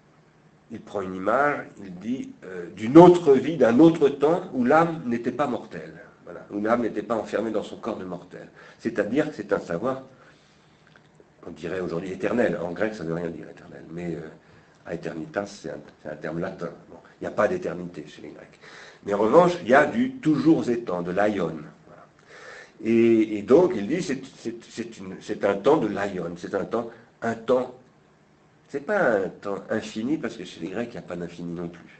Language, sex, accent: French, male, French